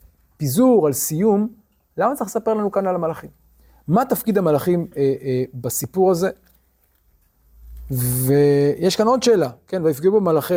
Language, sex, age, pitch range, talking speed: Hebrew, male, 30-49, 145-195 Hz, 135 wpm